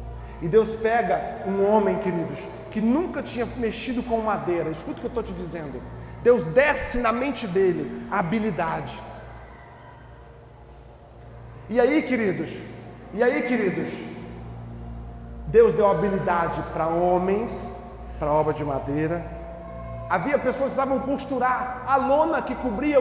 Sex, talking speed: male, 130 wpm